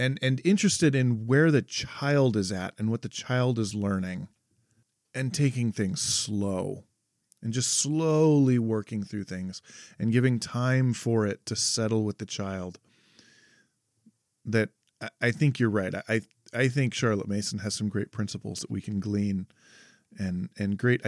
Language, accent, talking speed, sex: English, American, 160 wpm, male